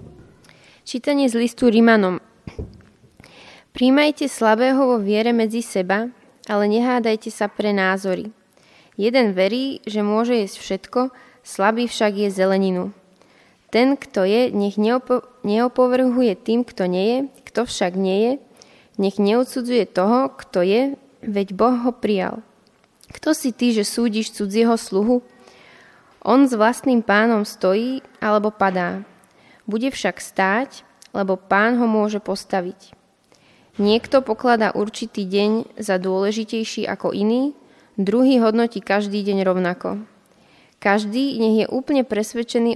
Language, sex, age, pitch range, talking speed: Slovak, female, 20-39, 195-240 Hz, 125 wpm